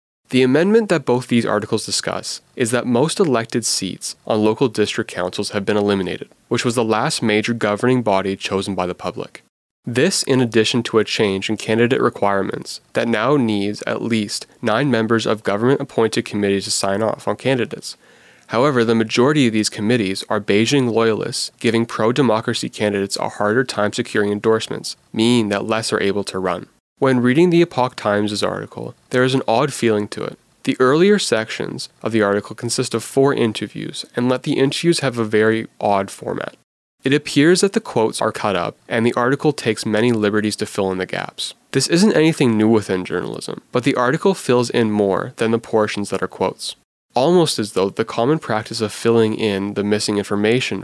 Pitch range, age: 105-125 Hz, 20-39